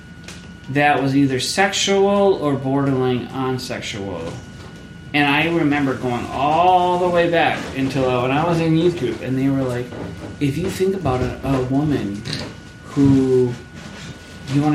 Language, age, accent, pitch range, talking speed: English, 30-49, American, 120-160 Hz, 150 wpm